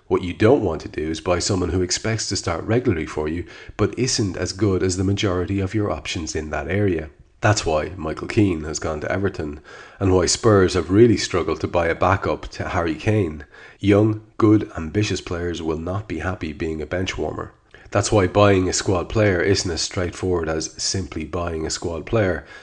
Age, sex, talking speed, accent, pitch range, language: 30-49, male, 205 wpm, Irish, 90-105 Hz, English